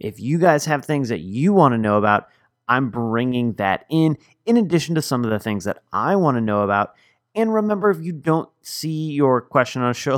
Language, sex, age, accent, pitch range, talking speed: English, male, 30-49, American, 115-155 Hz, 230 wpm